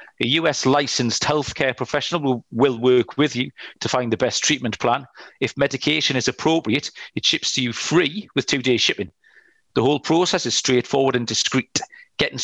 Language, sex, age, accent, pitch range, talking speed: English, male, 40-59, British, 125-155 Hz, 180 wpm